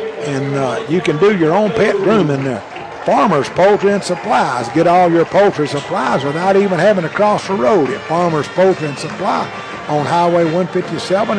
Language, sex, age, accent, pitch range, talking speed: English, male, 60-79, American, 155-195 Hz, 180 wpm